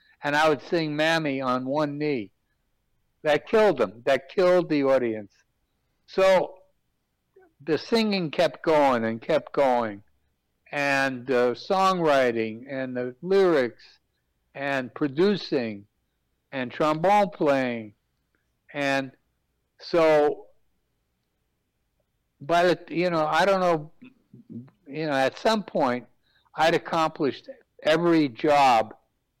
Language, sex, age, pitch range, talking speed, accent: English, male, 60-79, 125-170 Hz, 105 wpm, American